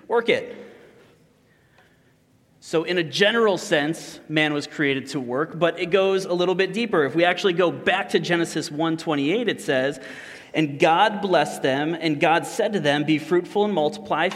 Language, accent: English, American